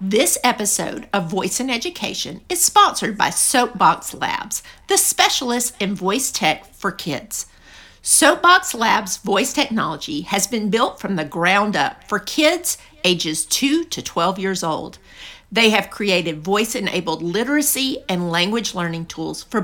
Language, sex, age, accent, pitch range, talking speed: English, female, 50-69, American, 210-330 Hz, 145 wpm